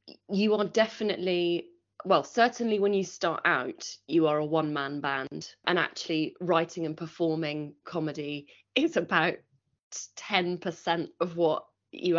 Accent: British